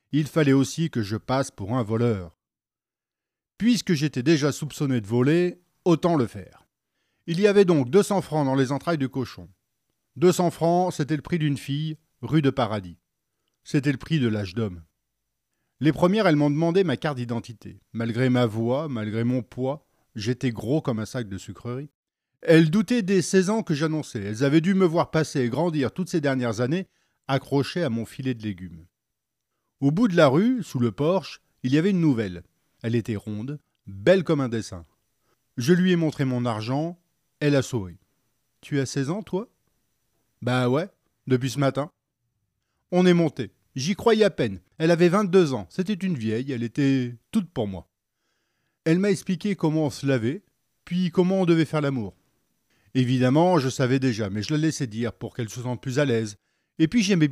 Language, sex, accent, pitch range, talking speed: French, male, French, 115-165 Hz, 190 wpm